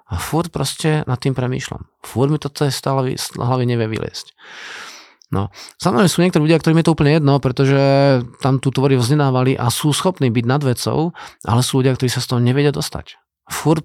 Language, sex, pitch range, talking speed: Slovak, male, 130-160 Hz, 185 wpm